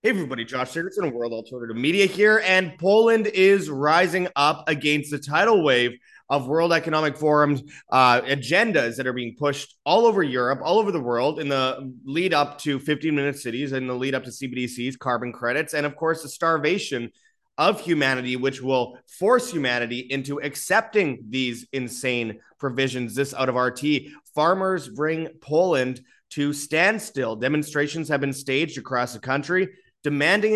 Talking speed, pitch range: 165 wpm, 130-155 Hz